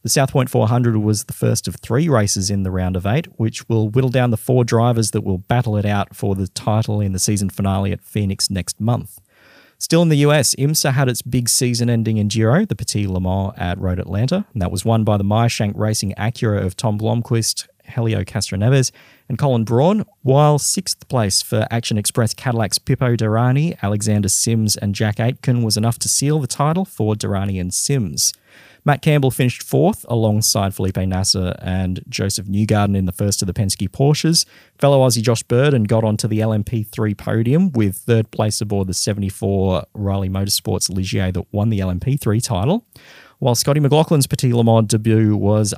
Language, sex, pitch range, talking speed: English, male, 100-125 Hz, 190 wpm